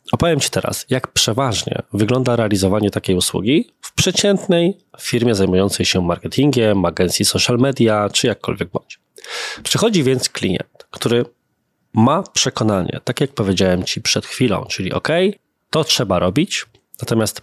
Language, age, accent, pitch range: Polish, 20-39, native, 100-140 Hz